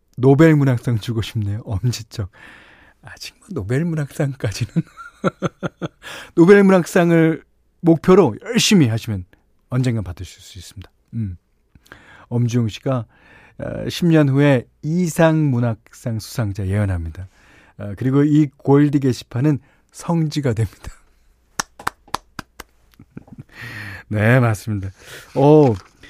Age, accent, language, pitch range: 40-59, native, Korean, 100-150 Hz